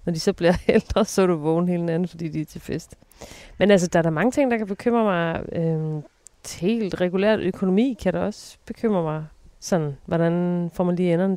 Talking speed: 220 wpm